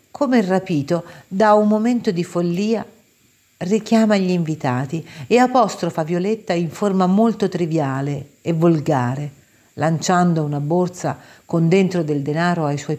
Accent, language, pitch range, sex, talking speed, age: native, Italian, 145-185 Hz, female, 135 wpm, 50-69